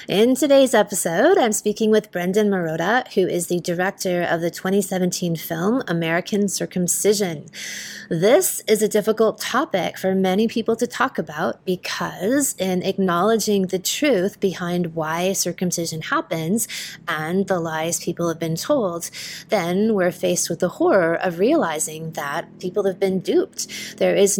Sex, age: female, 20-39